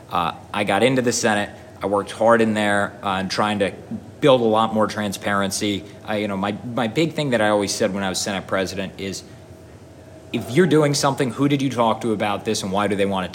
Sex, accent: male, American